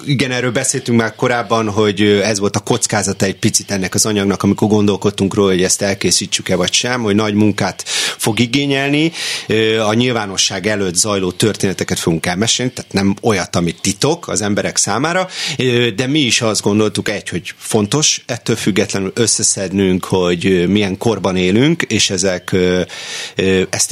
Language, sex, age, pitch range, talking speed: Hungarian, male, 30-49, 95-115 Hz, 150 wpm